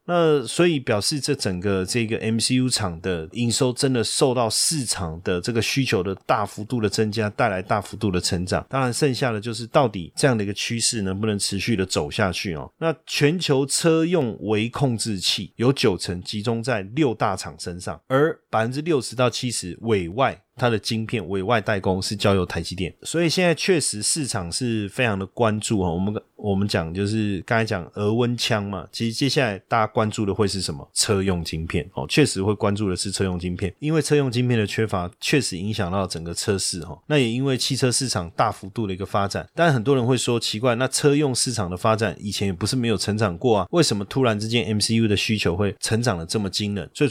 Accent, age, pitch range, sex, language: native, 30-49, 100-125 Hz, male, Chinese